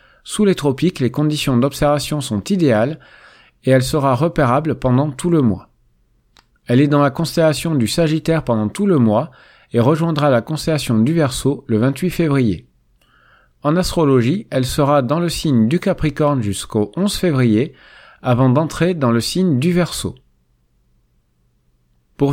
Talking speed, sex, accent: 150 wpm, male, French